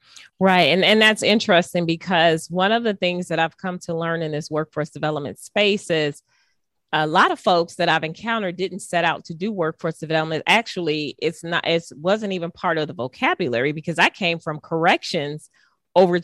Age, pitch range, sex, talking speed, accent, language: 30-49, 155-190 Hz, female, 190 wpm, American, English